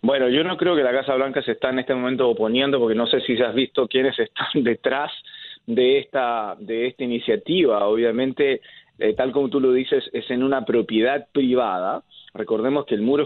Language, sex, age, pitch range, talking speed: Spanish, male, 30-49, 120-185 Hz, 205 wpm